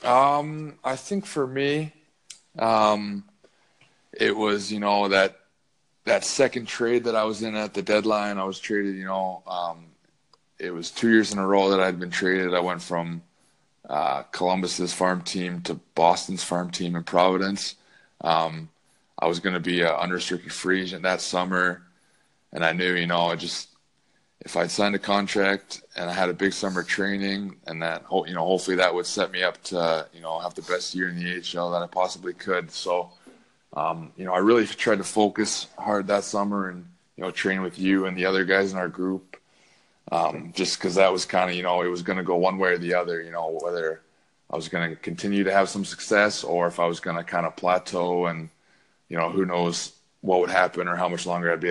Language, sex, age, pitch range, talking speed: English, male, 20-39, 85-100 Hz, 215 wpm